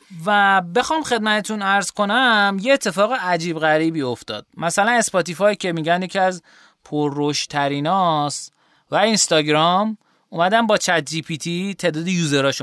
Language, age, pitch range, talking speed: Persian, 30-49, 135-195 Hz, 125 wpm